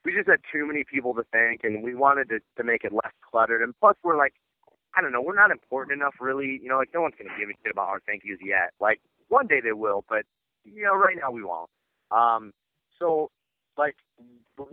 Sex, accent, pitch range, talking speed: male, American, 115-140 Hz, 245 wpm